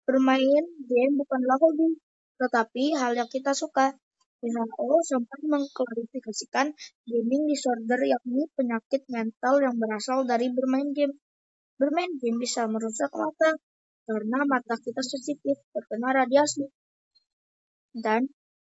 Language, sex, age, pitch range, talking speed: Indonesian, female, 20-39, 235-280 Hz, 110 wpm